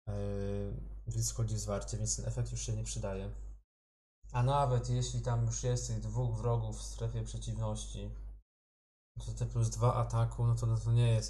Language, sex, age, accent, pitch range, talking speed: Polish, male, 20-39, native, 105-120 Hz, 180 wpm